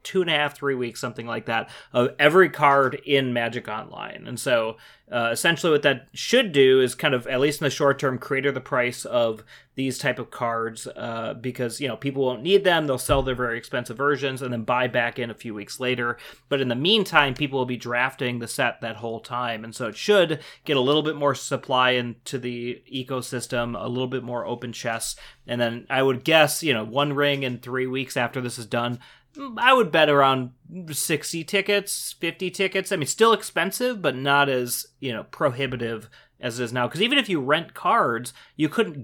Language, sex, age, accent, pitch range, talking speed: English, male, 30-49, American, 120-145 Hz, 215 wpm